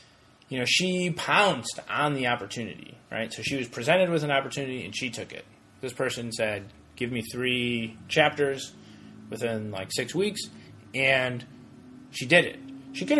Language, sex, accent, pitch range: English, male, American, 110-145 Hz